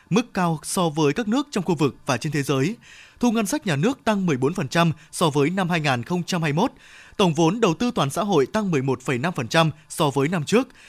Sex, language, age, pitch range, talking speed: male, Vietnamese, 20-39, 150-205 Hz, 205 wpm